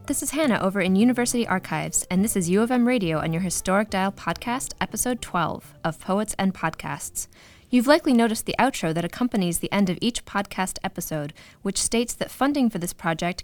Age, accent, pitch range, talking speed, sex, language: 20-39, American, 170-225 Hz, 200 wpm, female, English